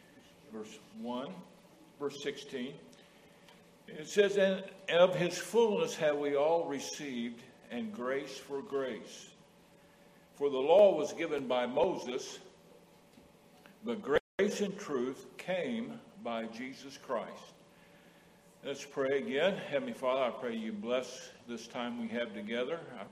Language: English